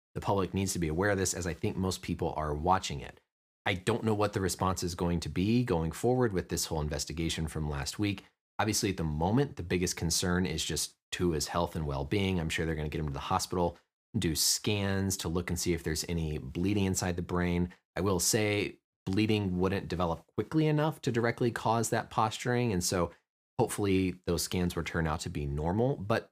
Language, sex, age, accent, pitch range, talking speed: English, male, 30-49, American, 85-100 Hz, 225 wpm